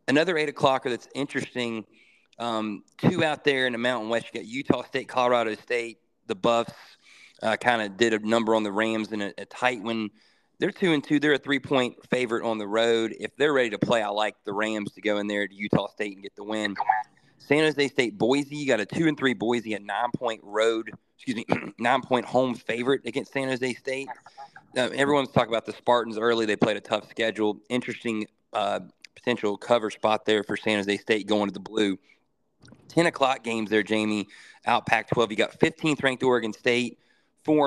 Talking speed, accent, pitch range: 200 wpm, American, 105-125 Hz